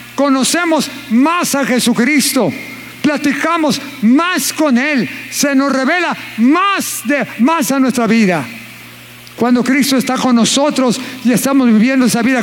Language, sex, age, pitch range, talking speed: Spanish, male, 50-69, 215-280 Hz, 130 wpm